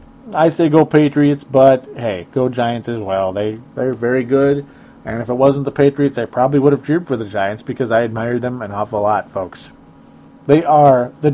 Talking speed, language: 210 wpm, English